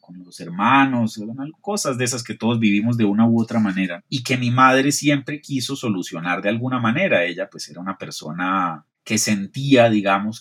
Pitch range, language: 95-125 Hz, Spanish